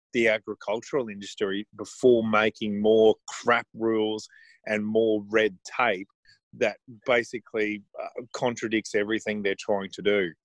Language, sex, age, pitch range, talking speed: English, male, 30-49, 100-110 Hz, 120 wpm